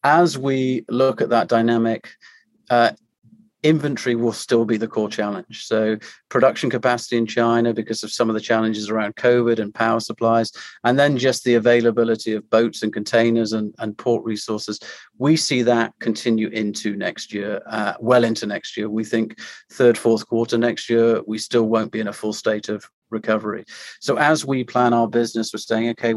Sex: male